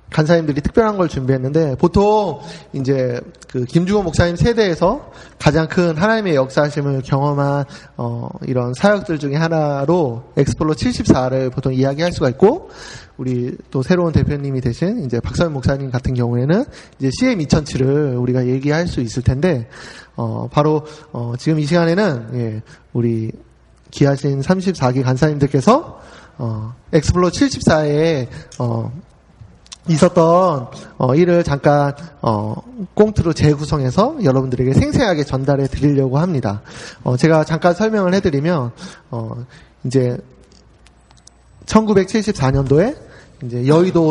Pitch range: 130-170 Hz